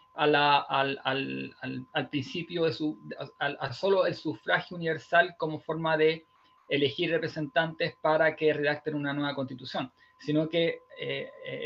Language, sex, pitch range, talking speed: Spanish, male, 140-165 Hz, 150 wpm